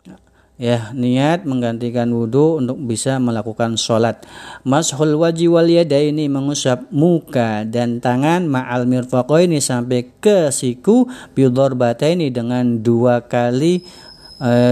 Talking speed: 110 wpm